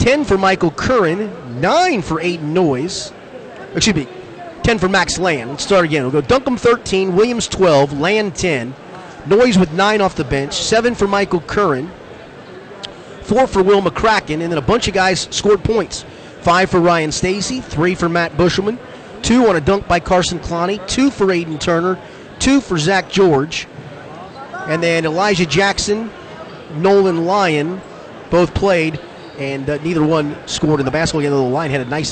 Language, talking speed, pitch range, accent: English, 170 wpm, 160-210 Hz, American